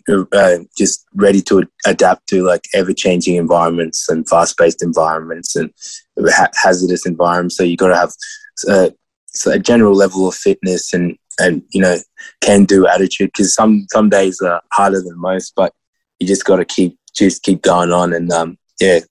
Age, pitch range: 20-39, 85-95 Hz